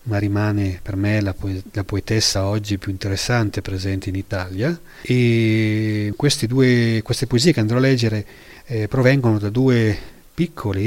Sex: male